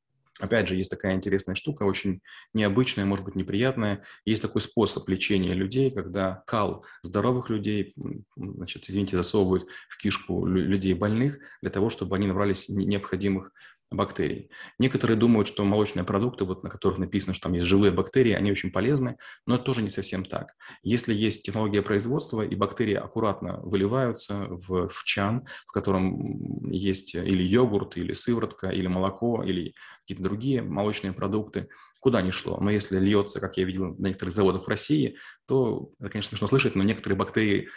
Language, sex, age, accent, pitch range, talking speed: Russian, male, 20-39, native, 95-115 Hz, 165 wpm